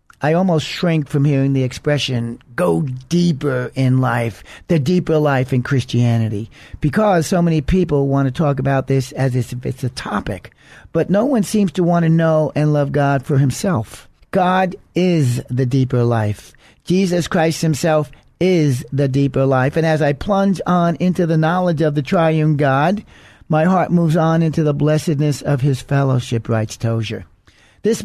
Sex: male